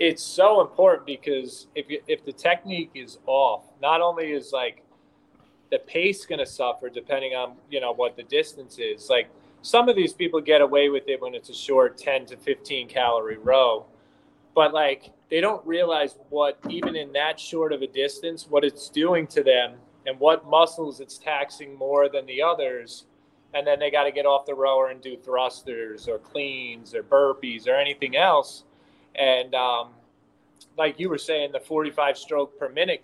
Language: English